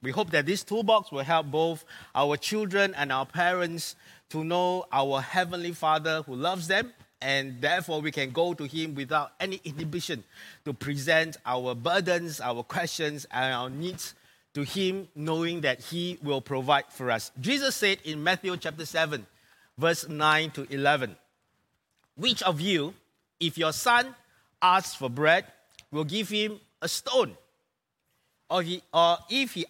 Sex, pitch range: male, 150-195 Hz